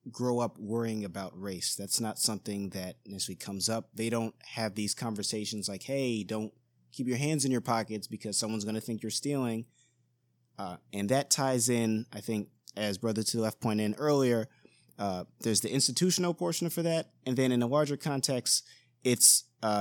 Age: 20-39